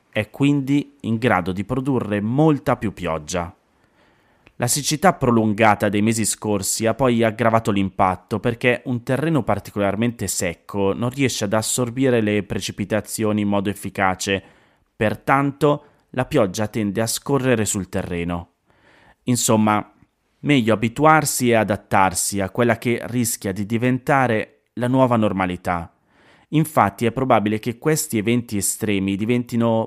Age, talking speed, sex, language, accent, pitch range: 30-49, 125 wpm, male, Italian, native, 100-125 Hz